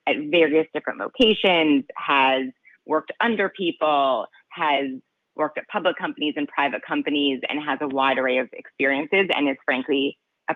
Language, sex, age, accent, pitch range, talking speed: English, female, 30-49, American, 145-185 Hz, 155 wpm